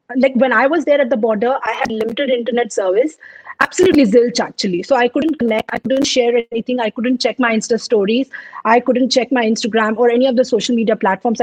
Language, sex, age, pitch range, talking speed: Punjabi, female, 30-49, 205-260 Hz, 220 wpm